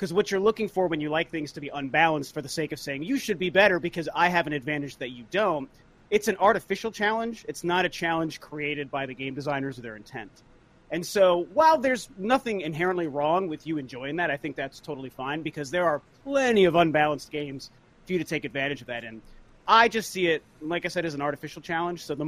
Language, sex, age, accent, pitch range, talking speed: English, male, 30-49, American, 135-180 Hz, 240 wpm